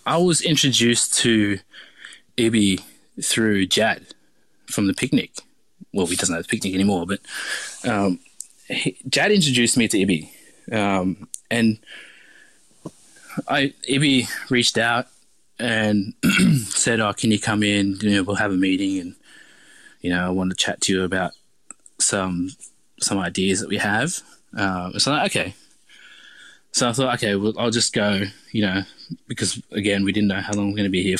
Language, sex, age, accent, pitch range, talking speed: English, male, 20-39, Australian, 100-120 Hz, 170 wpm